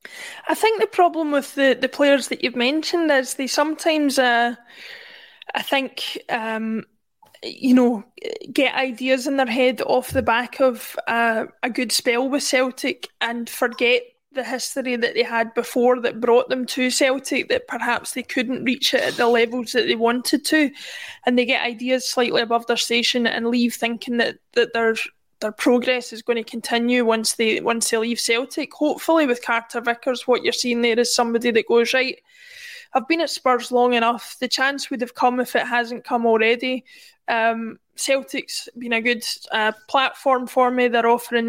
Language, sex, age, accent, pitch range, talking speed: English, female, 20-39, British, 235-275 Hz, 180 wpm